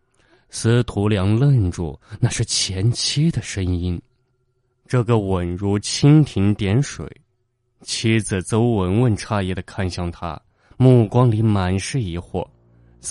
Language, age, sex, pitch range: Chinese, 20-39, male, 90-115 Hz